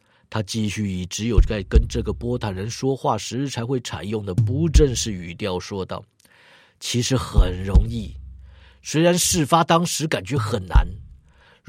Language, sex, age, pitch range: Chinese, male, 50-69, 95-135 Hz